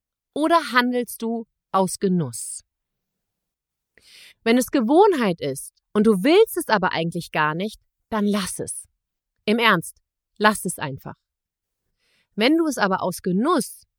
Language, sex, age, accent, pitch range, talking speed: German, female, 30-49, German, 175-240 Hz, 135 wpm